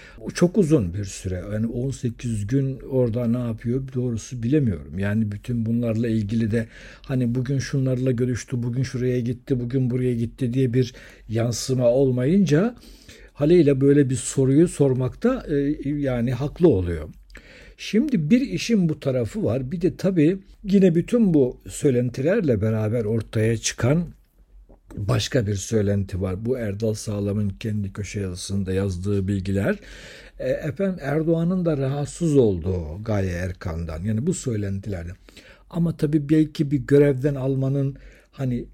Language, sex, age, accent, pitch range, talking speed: Turkish, male, 60-79, native, 110-145 Hz, 130 wpm